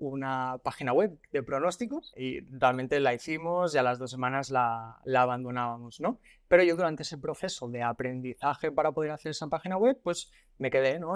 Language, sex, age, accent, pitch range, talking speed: Spanish, male, 20-39, Spanish, 130-175 Hz, 190 wpm